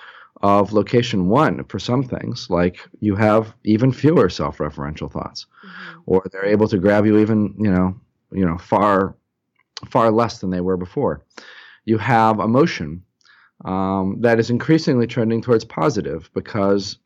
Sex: male